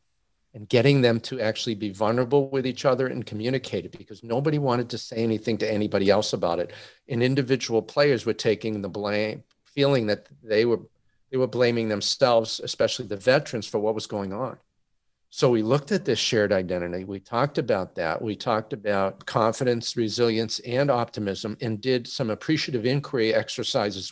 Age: 50-69